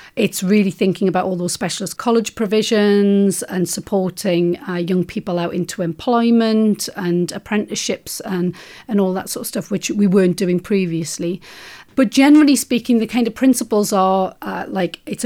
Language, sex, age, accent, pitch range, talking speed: English, female, 40-59, British, 185-220 Hz, 165 wpm